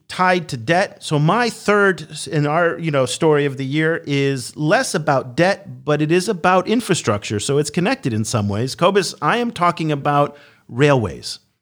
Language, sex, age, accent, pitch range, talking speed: English, male, 40-59, American, 120-170 Hz, 180 wpm